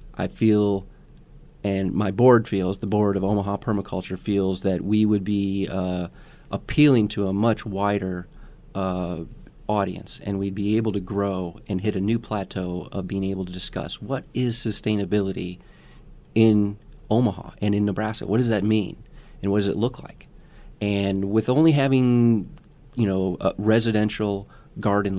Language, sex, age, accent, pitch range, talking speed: English, male, 30-49, American, 95-110 Hz, 155 wpm